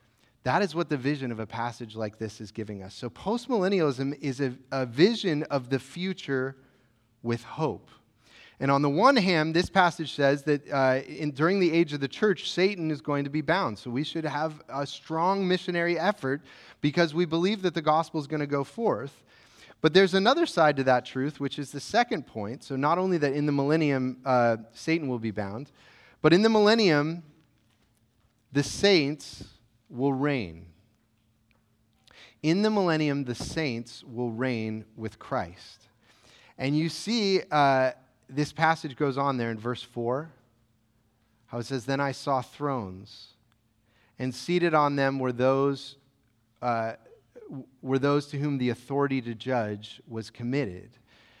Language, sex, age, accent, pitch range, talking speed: English, male, 30-49, American, 115-155 Hz, 165 wpm